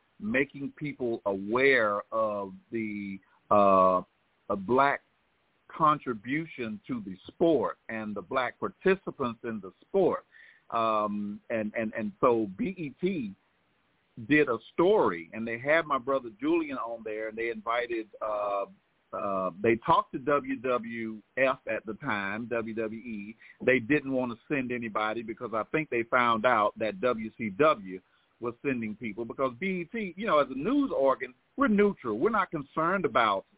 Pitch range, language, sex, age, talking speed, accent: 110-140 Hz, English, male, 50-69, 145 wpm, American